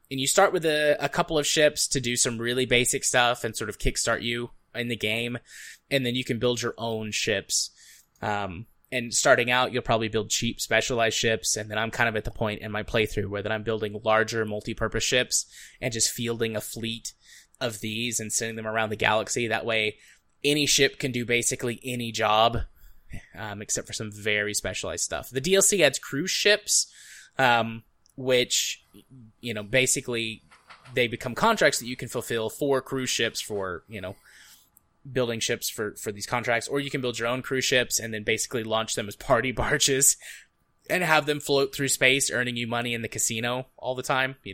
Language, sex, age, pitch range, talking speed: English, male, 20-39, 110-130 Hz, 200 wpm